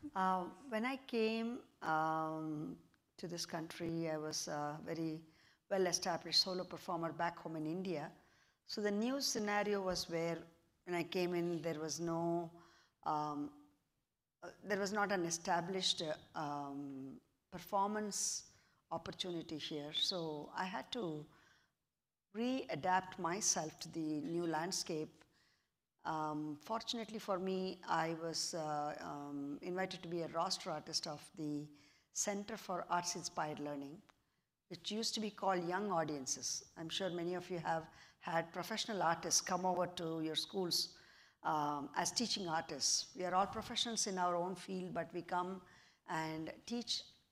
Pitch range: 155-185 Hz